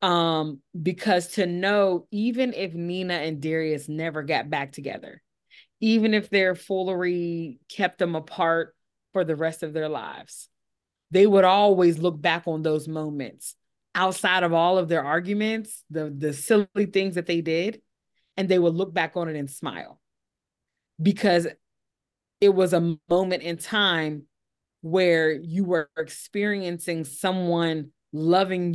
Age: 20-39